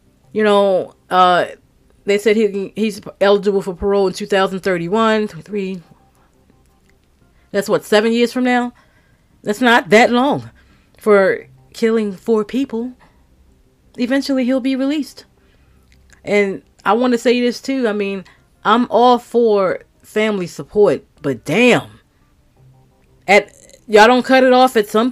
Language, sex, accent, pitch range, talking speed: English, female, American, 170-220 Hz, 140 wpm